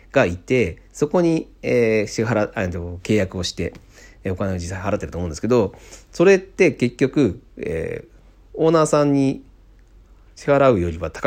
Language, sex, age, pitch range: Japanese, male, 40-59, 90-130 Hz